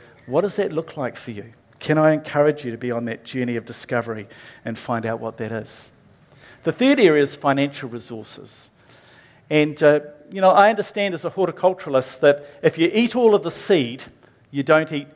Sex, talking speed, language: male, 200 wpm, English